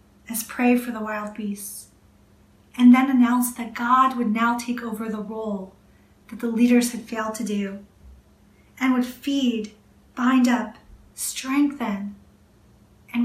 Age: 30-49